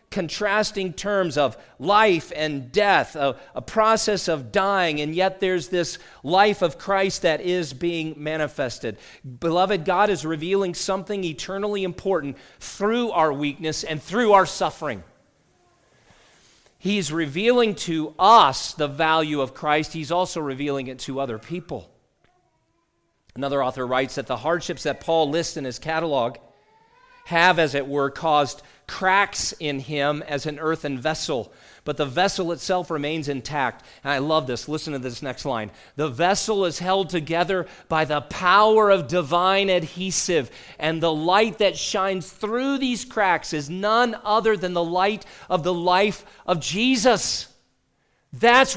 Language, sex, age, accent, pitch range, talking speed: English, male, 40-59, American, 150-200 Hz, 150 wpm